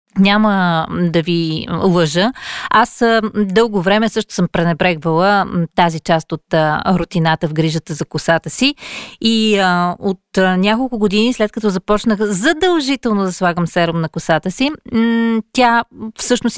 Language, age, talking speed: Bulgarian, 30-49, 130 wpm